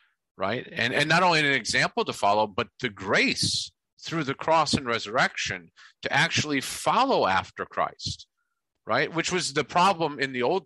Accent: American